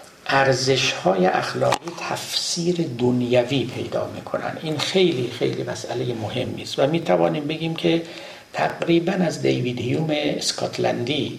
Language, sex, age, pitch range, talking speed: Persian, male, 60-79, 125-175 Hz, 115 wpm